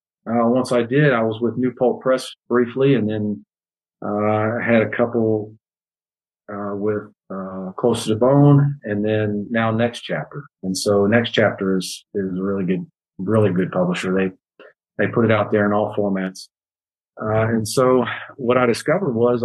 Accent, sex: American, male